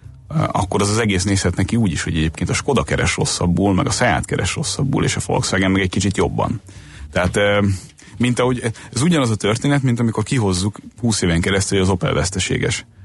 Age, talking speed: 30-49, 200 wpm